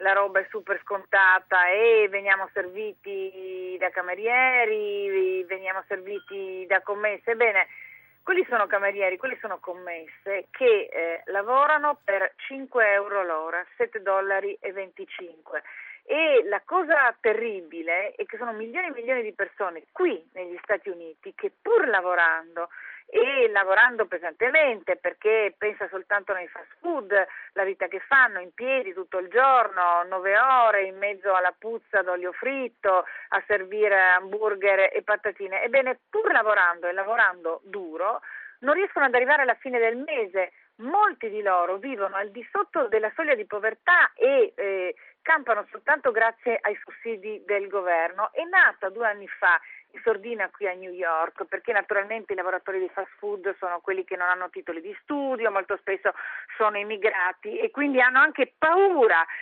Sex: female